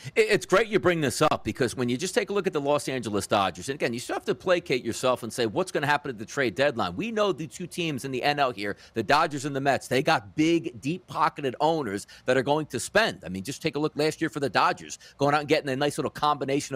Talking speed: 285 wpm